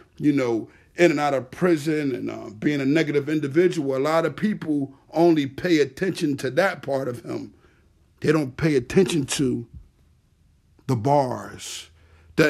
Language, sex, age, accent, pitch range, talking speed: English, male, 50-69, American, 125-175 Hz, 160 wpm